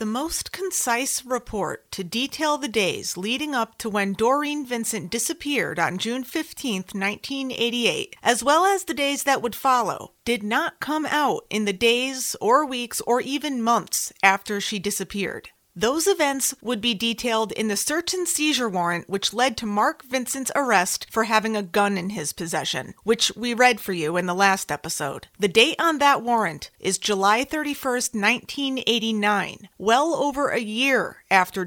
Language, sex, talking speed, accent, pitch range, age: English, female, 165 wpm, American, 205-270 Hz, 30-49